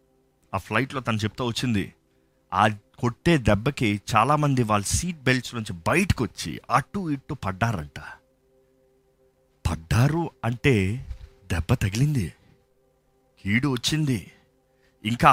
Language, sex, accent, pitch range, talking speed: Telugu, male, native, 110-140 Hz, 100 wpm